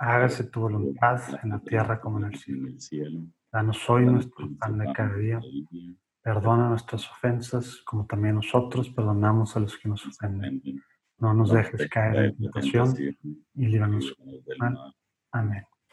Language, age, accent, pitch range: Spanish, 30-49, Mexican, 110-130 Hz